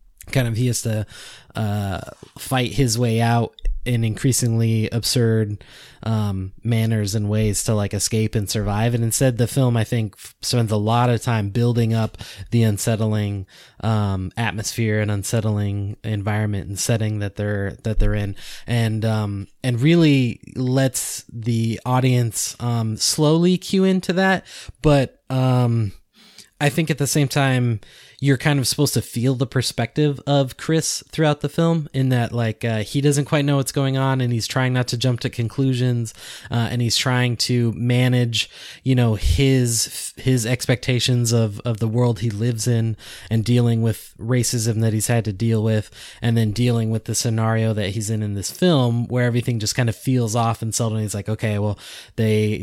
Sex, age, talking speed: male, 20-39, 180 wpm